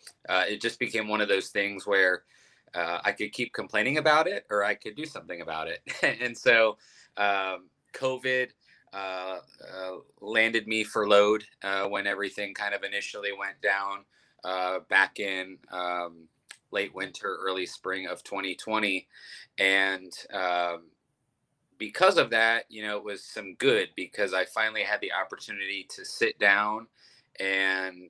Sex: male